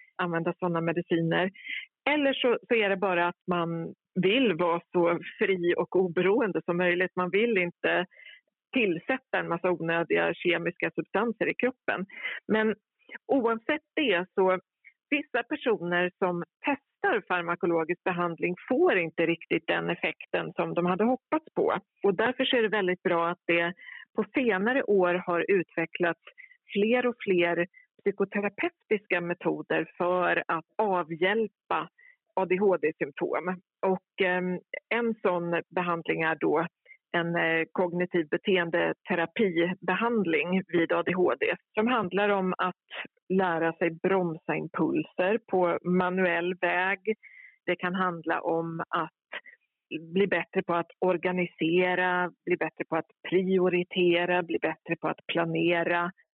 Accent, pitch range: native, 170-215 Hz